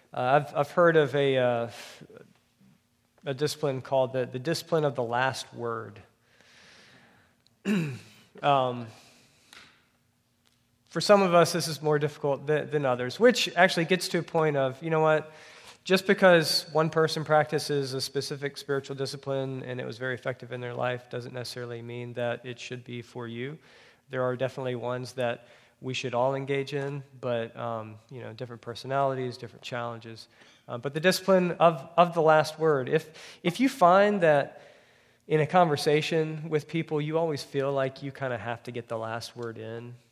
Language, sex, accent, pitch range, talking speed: English, male, American, 125-160 Hz, 170 wpm